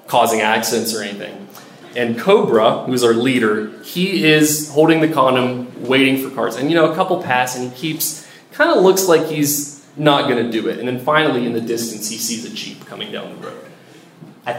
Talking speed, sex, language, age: 210 wpm, male, English, 20-39